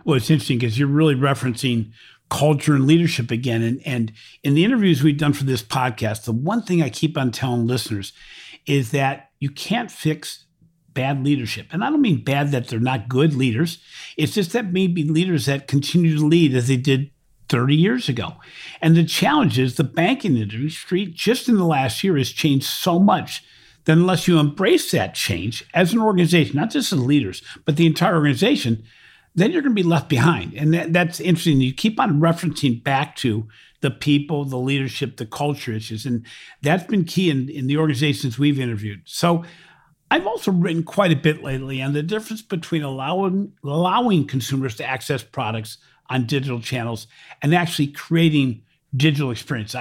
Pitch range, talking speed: 130-165 Hz, 185 wpm